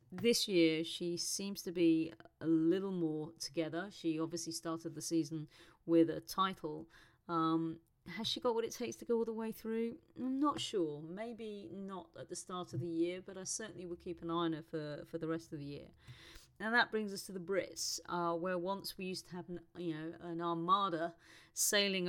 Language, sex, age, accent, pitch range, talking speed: English, female, 30-49, British, 165-180 Hz, 210 wpm